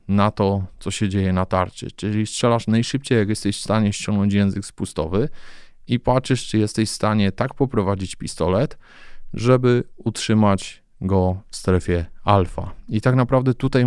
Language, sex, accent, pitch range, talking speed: Polish, male, native, 95-110 Hz, 155 wpm